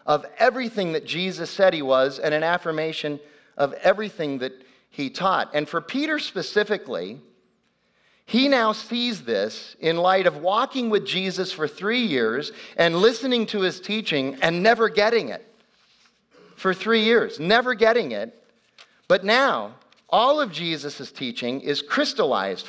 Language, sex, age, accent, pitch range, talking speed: English, male, 40-59, American, 140-205 Hz, 145 wpm